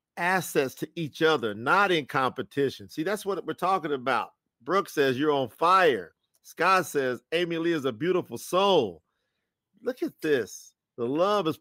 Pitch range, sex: 145-190 Hz, male